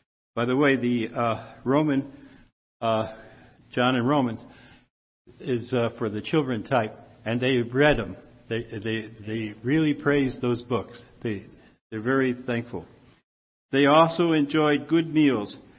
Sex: male